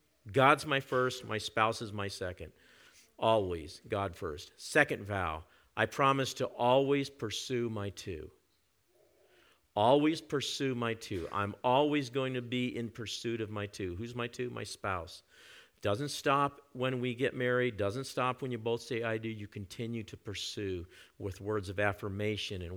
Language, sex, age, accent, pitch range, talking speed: English, male, 50-69, American, 100-125 Hz, 165 wpm